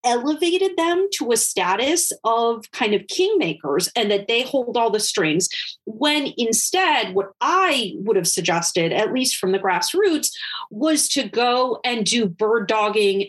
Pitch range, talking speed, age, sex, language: 200-285 Hz, 160 wpm, 30-49, female, English